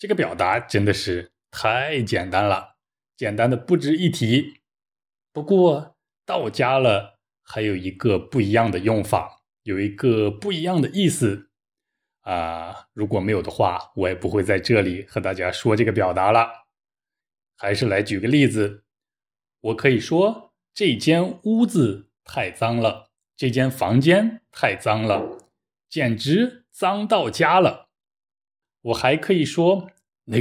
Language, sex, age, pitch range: Chinese, male, 20-39, 105-160 Hz